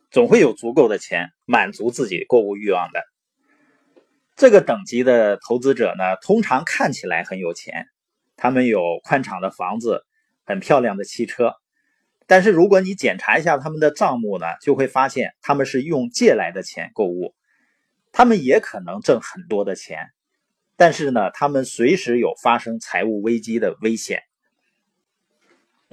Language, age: Chinese, 30-49